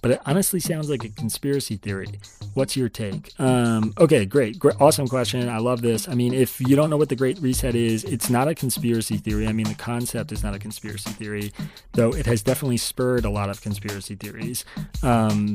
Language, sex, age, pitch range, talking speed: English, male, 30-49, 105-130 Hz, 215 wpm